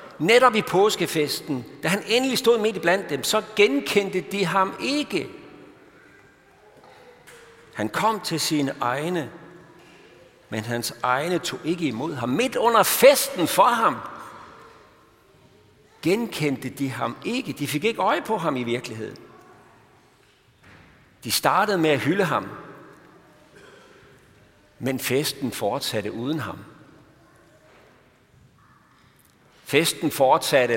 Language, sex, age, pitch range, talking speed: Danish, male, 60-79, 125-195 Hz, 115 wpm